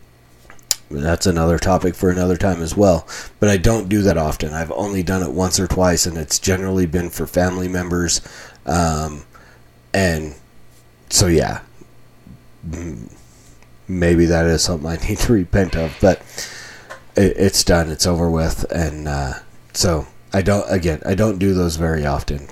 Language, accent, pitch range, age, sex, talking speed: English, American, 80-100 Hz, 30-49, male, 155 wpm